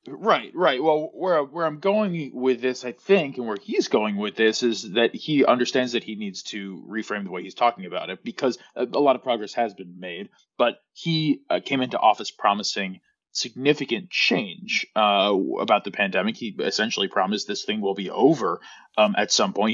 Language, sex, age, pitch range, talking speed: English, male, 20-39, 100-145 Hz, 205 wpm